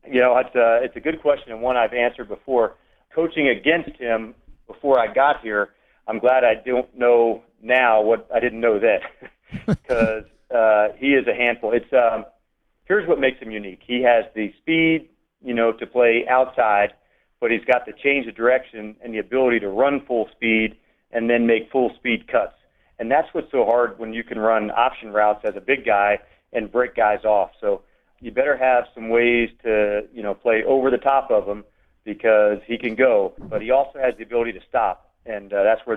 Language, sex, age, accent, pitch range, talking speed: English, male, 40-59, American, 110-125 Hz, 205 wpm